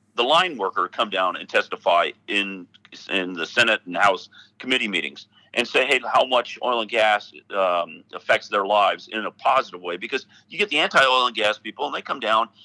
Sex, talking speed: male, 200 wpm